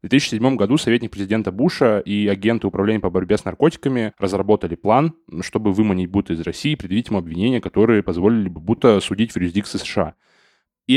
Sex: male